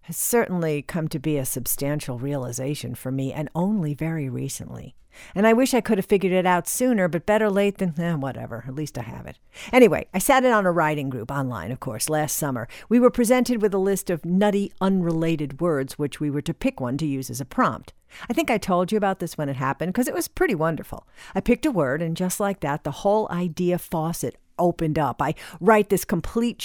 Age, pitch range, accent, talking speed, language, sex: 50-69, 140-205 Hz, American, 230 wpm, English, female